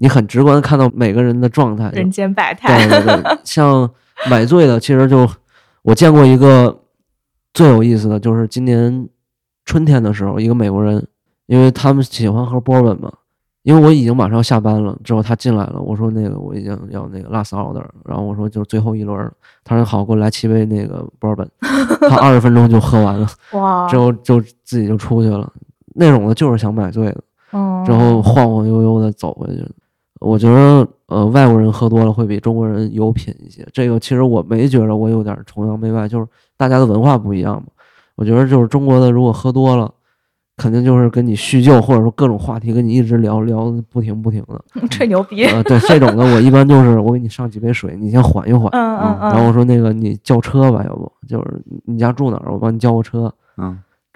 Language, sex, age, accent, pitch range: Chinese, male, 20-39, native, 110-130 Hz